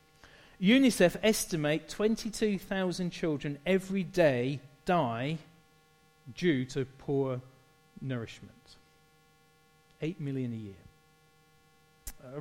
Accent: British